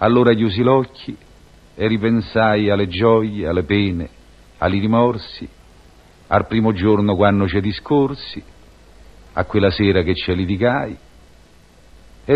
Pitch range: 80-125 Hz